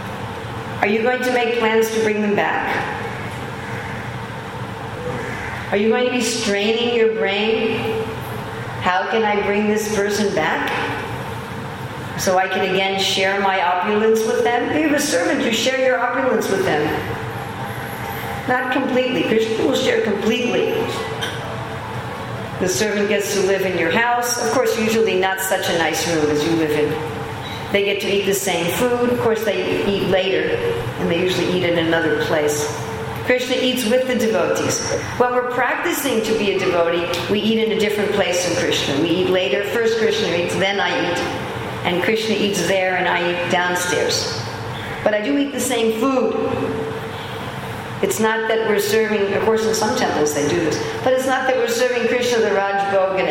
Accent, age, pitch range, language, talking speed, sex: American, 50-69, 155-230 Hz, English, 175 wpm, female